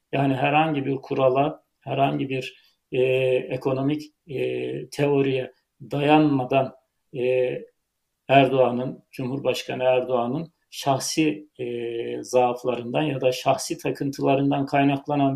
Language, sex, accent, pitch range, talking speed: Turkish, male, native, 130-150 Hz, 90 wpm